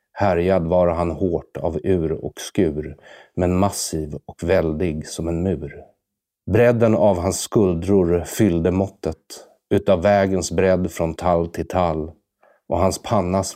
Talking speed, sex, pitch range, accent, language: 135 wpm, male, 80-95 Hz, Swedish, English